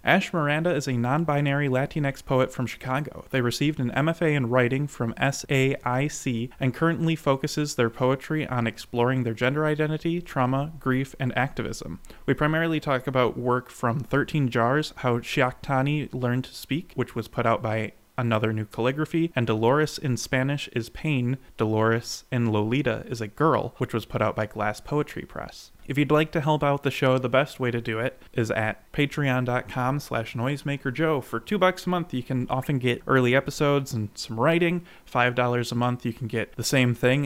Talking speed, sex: 185 wpm, male